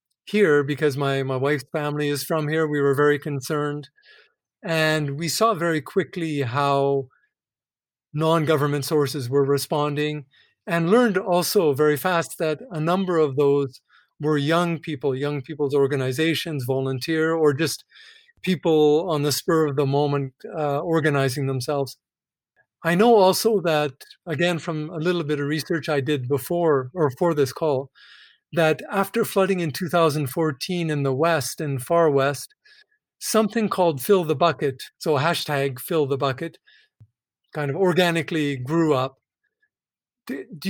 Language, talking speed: English, 145 wpm